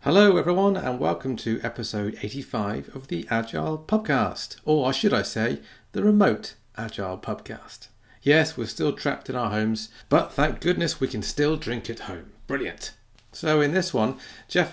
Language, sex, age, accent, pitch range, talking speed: English, male, 40-59, British, 110-140 Hz, 165 wpm